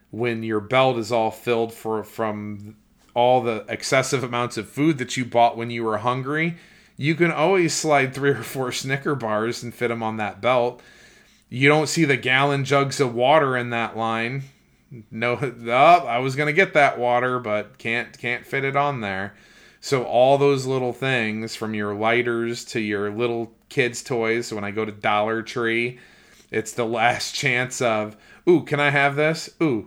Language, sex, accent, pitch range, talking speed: English, male, American, 110-130 Hz, 190 wpm